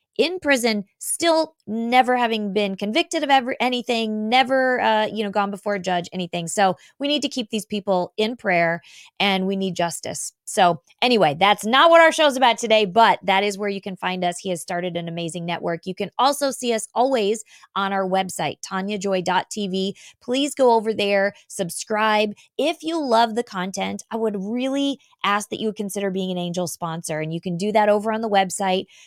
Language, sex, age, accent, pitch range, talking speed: English, female, 20-39, American, 190-245 Hz, 200 wpm